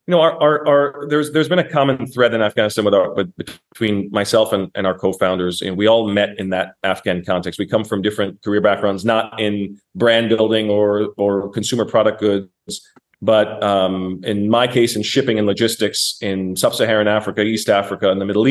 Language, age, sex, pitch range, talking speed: English, 30-49, male, 100-120 Hz, 200 wpm